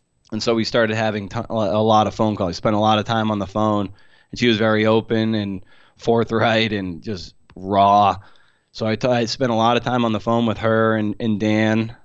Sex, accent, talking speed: male, American, 225 wpm